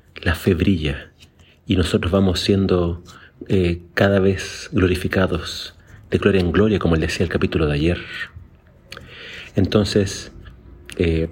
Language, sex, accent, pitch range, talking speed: Spanish, male, Argentinian, 85-100 Hz, 125 wpm